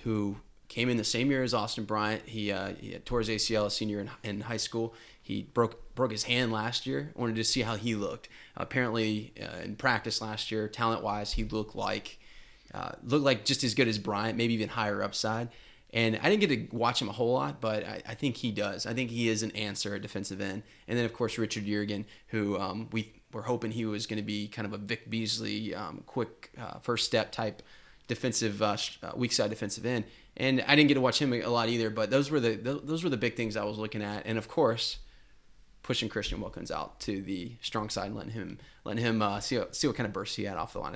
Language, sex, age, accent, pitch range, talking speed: English, male, 20-39, American, 105-120 Hz, 245 wpm